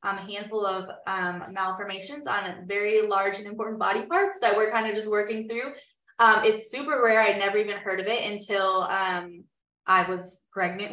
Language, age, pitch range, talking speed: English, 20-39, 195-230 Hz, 190 wpm